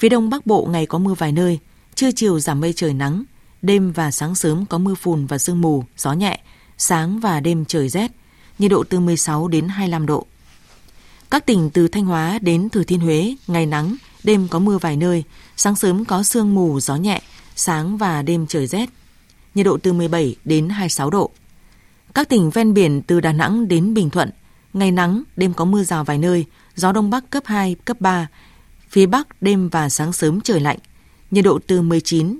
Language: Vietnamese